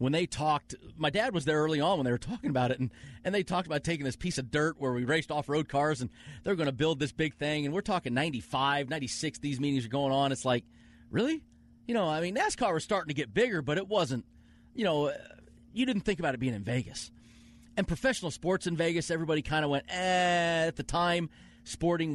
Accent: American